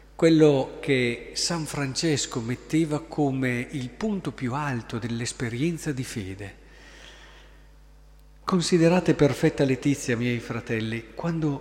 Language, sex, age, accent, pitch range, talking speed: Italian, male, 40-59, native, 120-155 Hz, 100 wpm